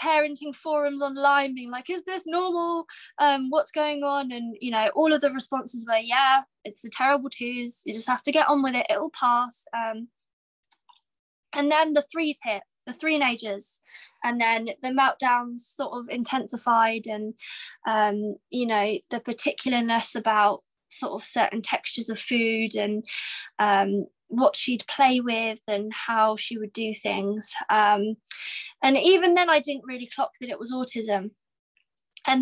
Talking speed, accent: 165 wpm, British